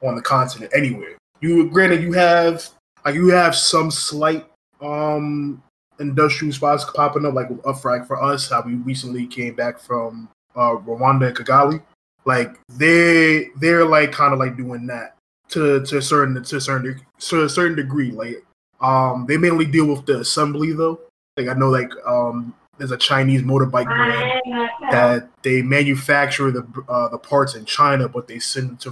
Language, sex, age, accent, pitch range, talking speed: English, male, 20-39, American, 125-150 Hz, 180 wpm